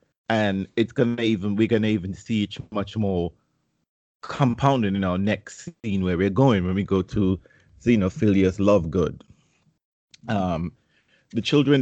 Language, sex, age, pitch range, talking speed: English, male, 30-49, 90-110 Hz, 145 wpm